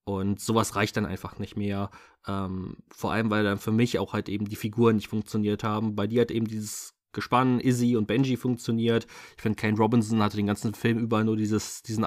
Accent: German